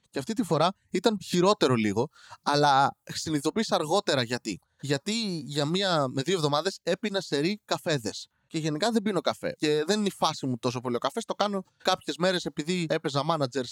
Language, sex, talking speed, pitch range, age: Greek, male, 185 wpm, 140-210 Hz, 20-39